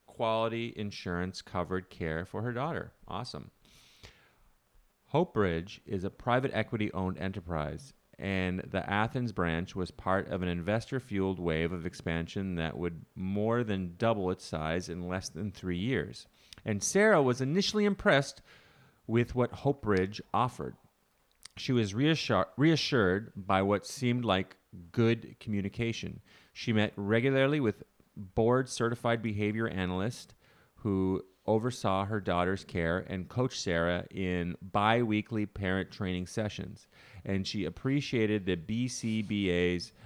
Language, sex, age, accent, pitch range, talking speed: English, male, 30-49, American, 95-115 Hz, 125 wpm